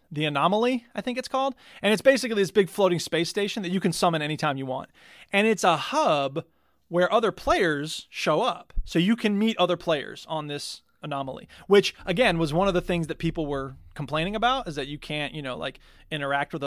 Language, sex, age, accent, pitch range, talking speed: English, male, 30-49, American, 150-200 Hz, 215 wpm